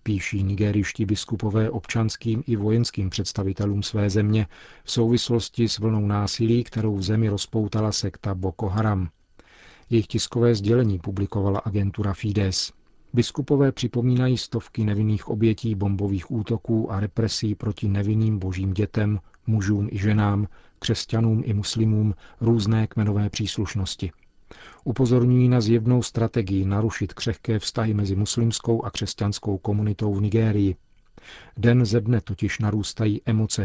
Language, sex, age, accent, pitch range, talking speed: Czech, male, 40-59, native, 100-115 Hz, 125 wpm